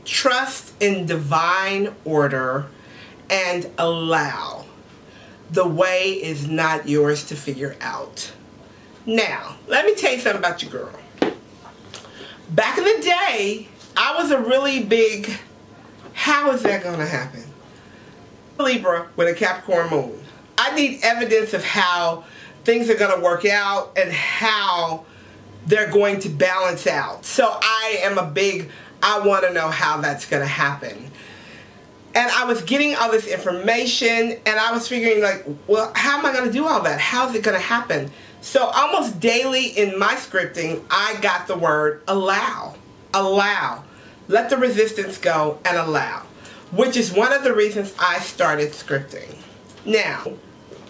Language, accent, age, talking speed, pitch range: English, American, 40-59, 155 wpm, 165-230 Hz